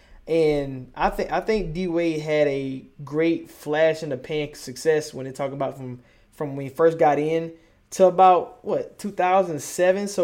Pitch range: 140-170 Hz